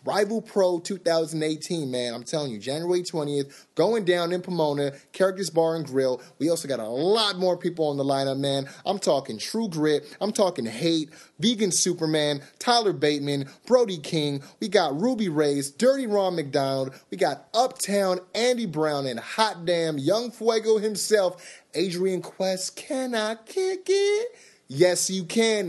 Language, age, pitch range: English, 30-49, 145-190 Hz